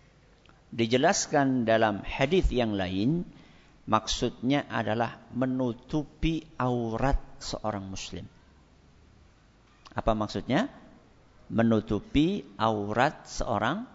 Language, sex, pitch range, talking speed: English, male, 110-155 Hz, 70 wpm